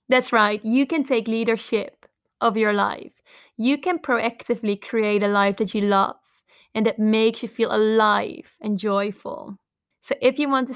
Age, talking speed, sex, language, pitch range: 20-39, 175 wpm, female, English, 210-245 Hz